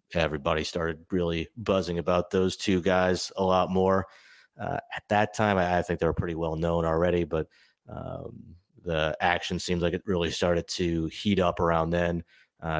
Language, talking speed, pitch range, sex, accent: English, 185 wpm, 80-95 Hz, male, American